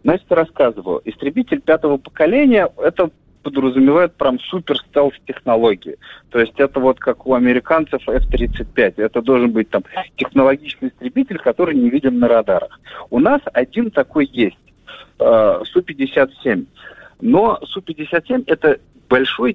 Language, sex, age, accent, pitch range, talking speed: Russian, male, 40-59, native, 120-175 Hz, 125 wpm